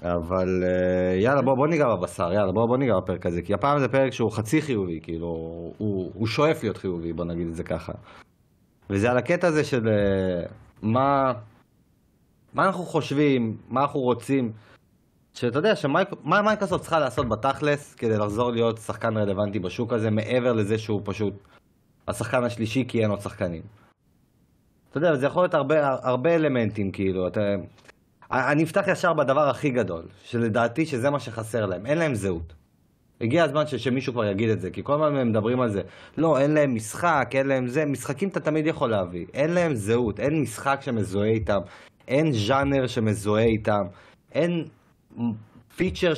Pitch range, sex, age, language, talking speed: 105-145 Hz, male, 30-49, Hebrew, 170 wpm